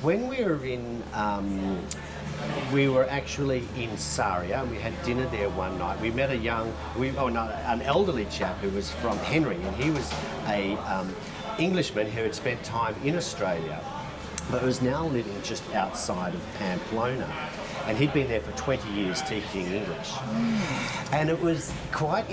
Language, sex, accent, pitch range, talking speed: English, male, Australian, 105-145 Hz, 170 wpm